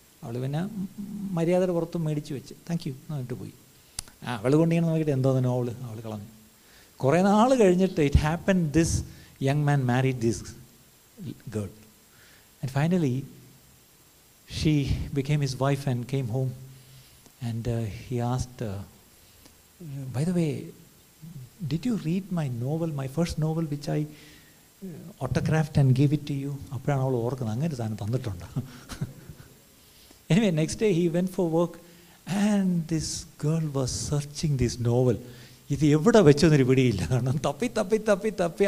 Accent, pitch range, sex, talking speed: native, 125-170 Hz, male, 135 wpm